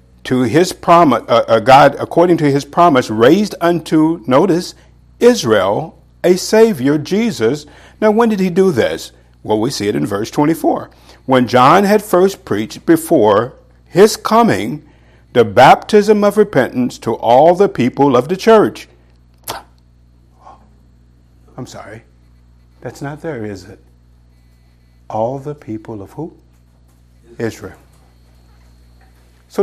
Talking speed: 130 wpm